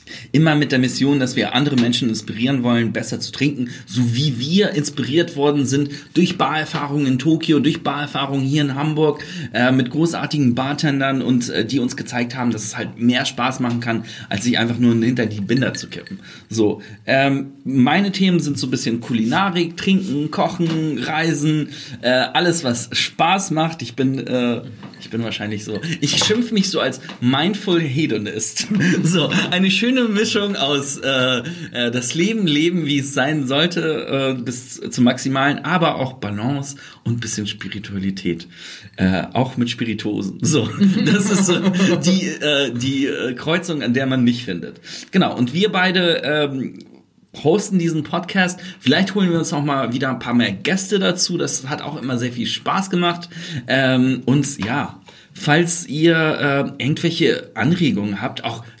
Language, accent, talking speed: German, German, 165 wpm